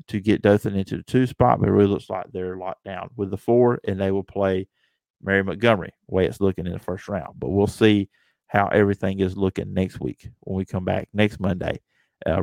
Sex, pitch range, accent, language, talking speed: male, 100-120 Hz, American, English, 230 wpm